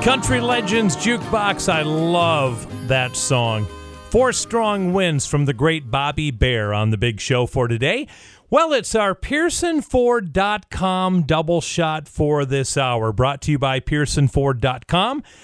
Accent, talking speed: American, 135 wpm